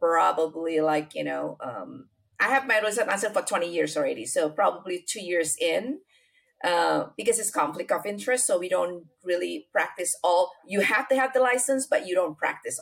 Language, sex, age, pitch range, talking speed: English, female, 30-49, 155-195 Hz, 185 wpm